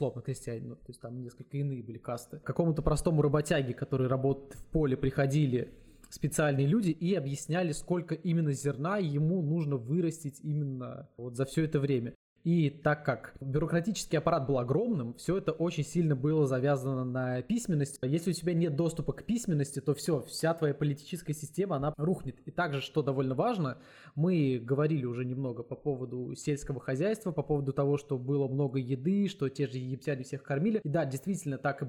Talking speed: 175 wpm